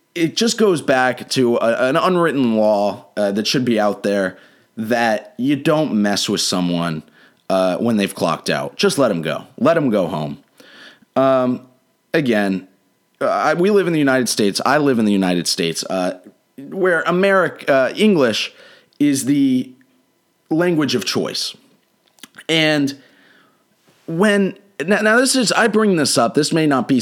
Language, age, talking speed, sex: English, 30-49, 155 wpm, male